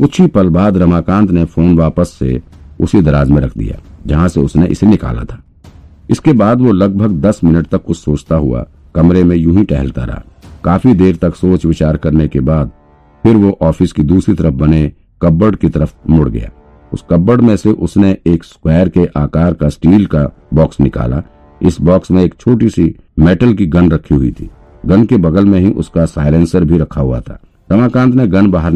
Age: 50-69